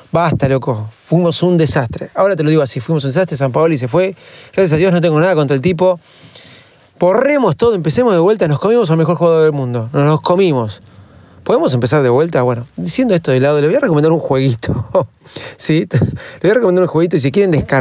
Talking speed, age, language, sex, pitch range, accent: 220 wpm, 30-49, Spanish, male, 135-180 Hz, Argentinian